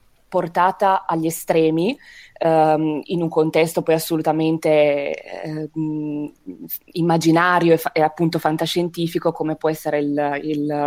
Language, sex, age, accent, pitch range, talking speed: Italian, female, 20-39, native, 160-190 Hz, 115 wpm